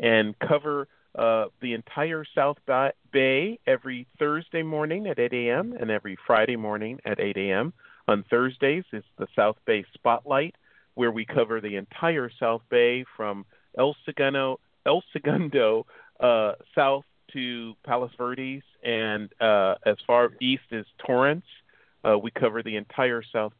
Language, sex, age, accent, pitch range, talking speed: English, male, 40-59, American, 105-135 Hz, 145 wpm